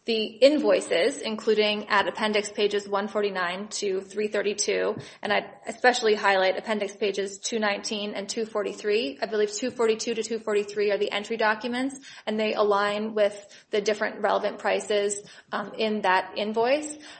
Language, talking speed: English, 175 wpm